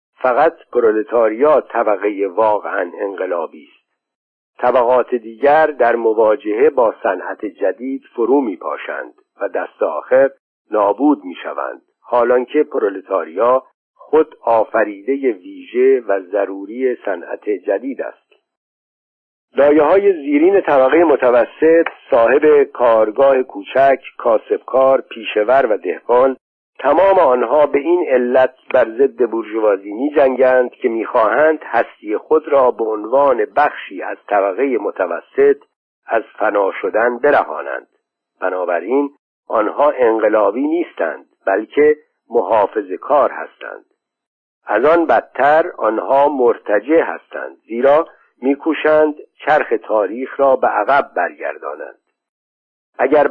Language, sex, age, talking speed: Persian, male, 50-69, 100 wpm